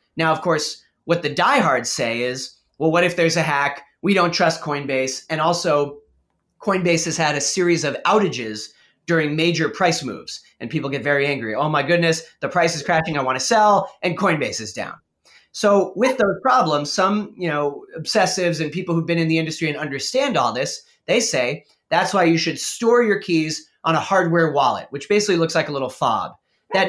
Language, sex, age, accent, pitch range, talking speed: English, male, 30-49, American, 150-190 Hz, 205 wpm